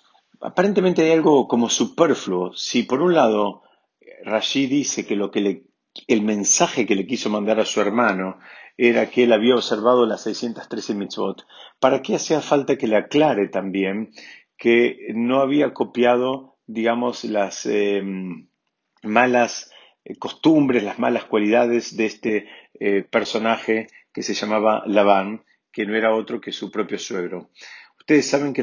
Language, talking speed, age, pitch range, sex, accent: Spanish, 150 wpm, 50-69, 105-135 Hz, male, Argentinian